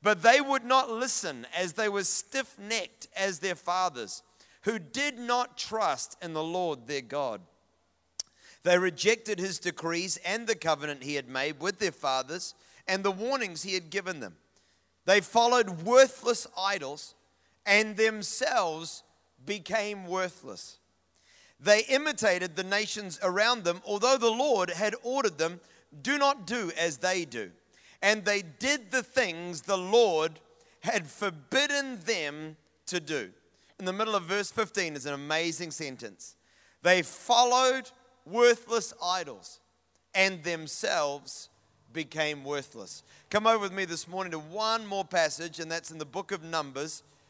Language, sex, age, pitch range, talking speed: English, male, 40-59, 160-220 Hz, 145 wpm